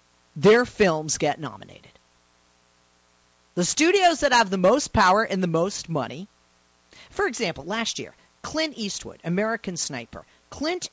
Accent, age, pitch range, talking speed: American, 40-59, 145-235 Hz, 130 wpm